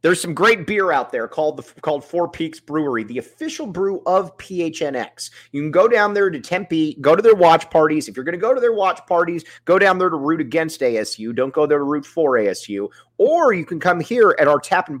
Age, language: 30-49, English